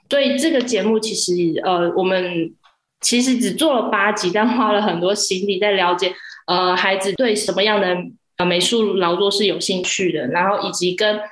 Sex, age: female, 20-39